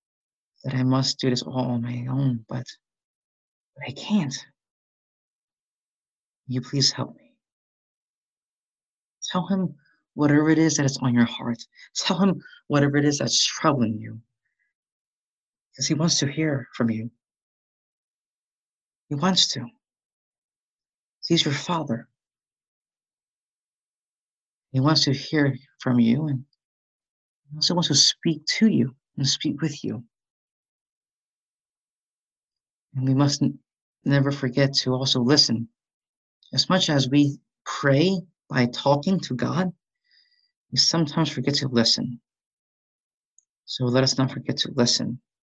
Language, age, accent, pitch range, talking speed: English, 50-69, American, 125-155 Hz, 125 wpm